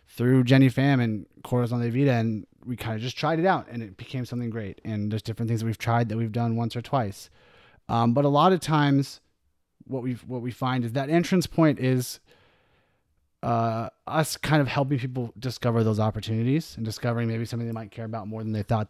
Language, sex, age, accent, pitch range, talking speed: English, male, 30-49, American, 110-125 Hz, 220 wpm